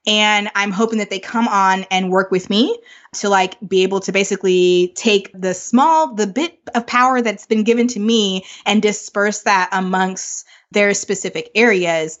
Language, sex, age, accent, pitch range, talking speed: English, female, 20-39, American, 190-240 Hz, 175 wpm